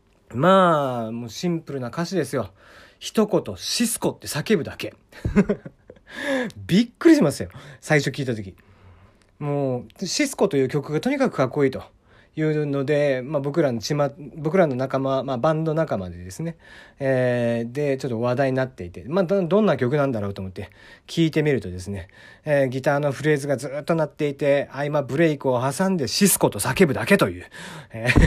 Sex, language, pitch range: male, Japanese, 120-185 Hz